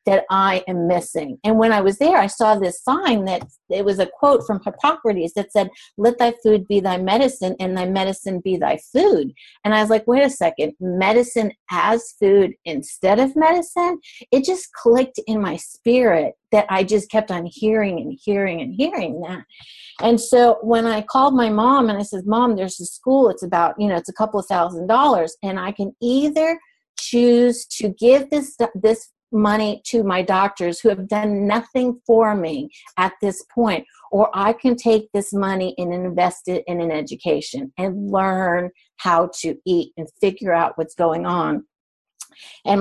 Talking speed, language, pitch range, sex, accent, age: 190 wpm, English, 185-240 Hz, female, American, 50-69